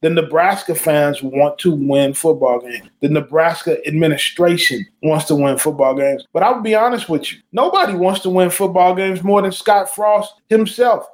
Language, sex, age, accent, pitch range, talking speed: English, male, 20-39, American, 165-210 Hz, 180 wpm